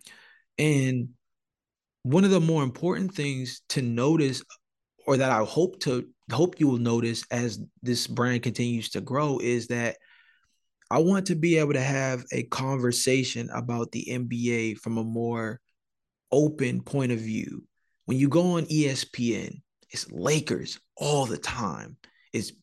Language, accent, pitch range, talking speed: English, American, 120-160 Hz, 150 wpm